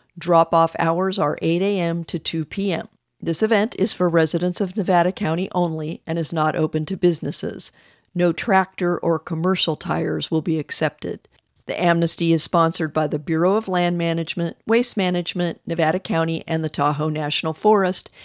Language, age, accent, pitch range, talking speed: English, 50-69, American, 155-185 Hz, 165 wpm